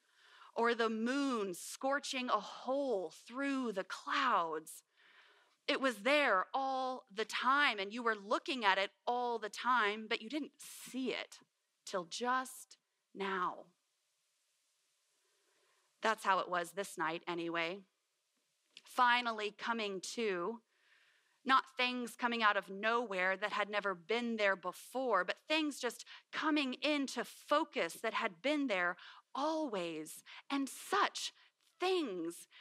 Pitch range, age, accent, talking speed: 200-275 Hz, 30-49, American, 125 wpm